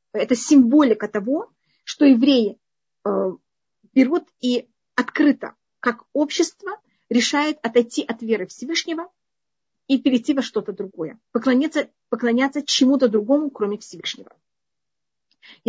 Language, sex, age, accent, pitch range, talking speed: Russian, female, 40-59, native, 220-280 Hz, 105 wpm